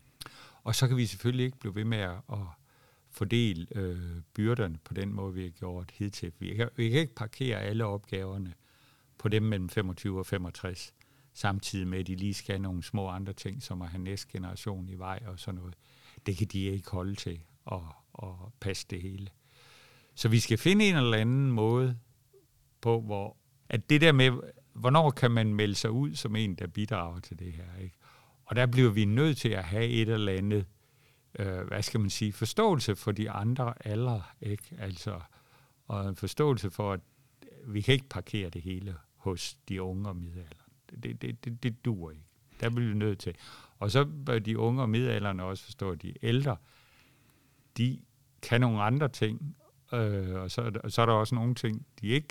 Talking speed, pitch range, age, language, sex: 200 wpm, 95-125 Hz, 60-79, Danish, male